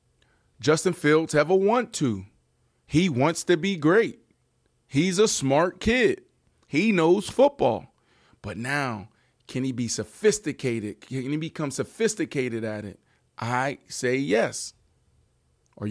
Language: English